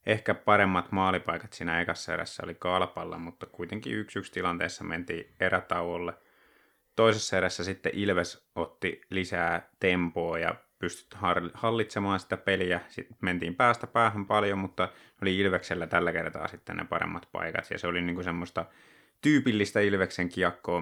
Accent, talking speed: native, 140 wpm